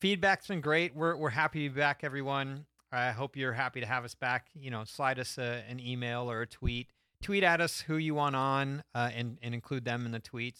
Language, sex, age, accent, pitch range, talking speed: English, male, 30-49, American, 110-135 Hz, 245 wpm